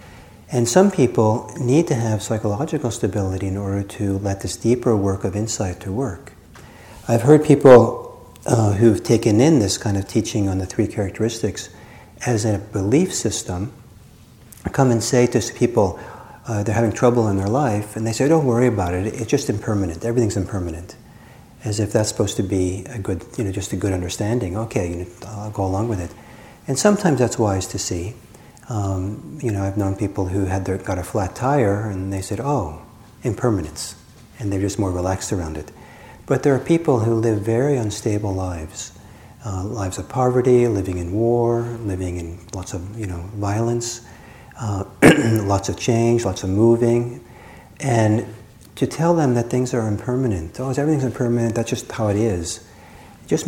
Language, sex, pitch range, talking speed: English, male, 100-120 Hz, 180 wpm